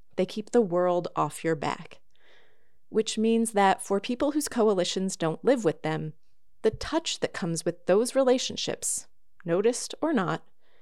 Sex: female